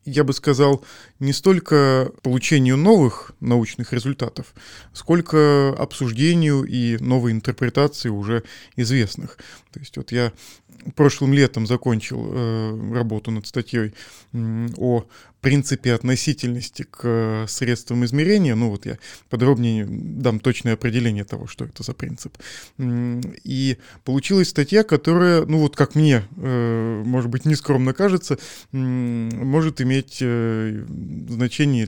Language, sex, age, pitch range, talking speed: Russian, male, 20-39, 115-140 Hz, 115 wpm